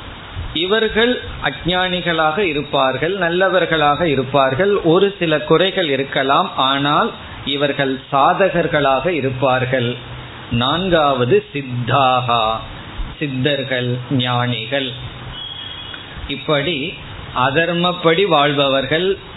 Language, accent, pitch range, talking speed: Tamil, native, 130-175 Hz, 50 wpm